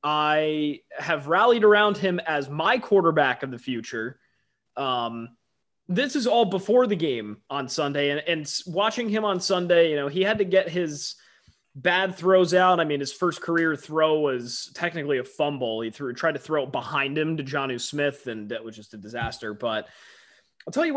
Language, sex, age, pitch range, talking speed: English, male, 20-39, 145-185 Hz, 190 wpm